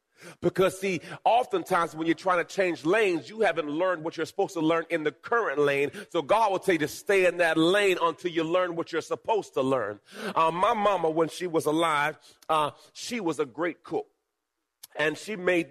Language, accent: English, American